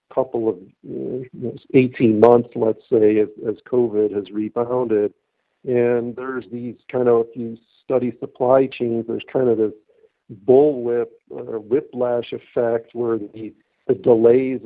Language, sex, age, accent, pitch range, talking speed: English, male, 50-69, American, 115-135 Hz, 145 wpm